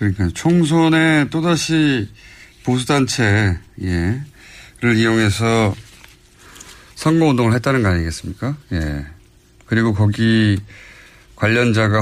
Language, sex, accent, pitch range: Korean, male, native, 95-140 Hz